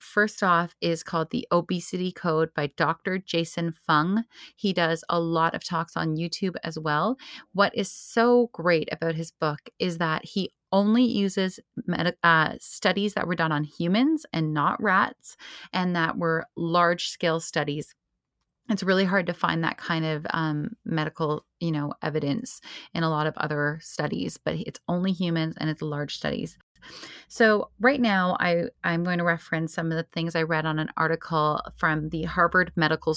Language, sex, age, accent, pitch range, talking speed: English, female, 30-49, American, 155-185 Hz, 175 wpm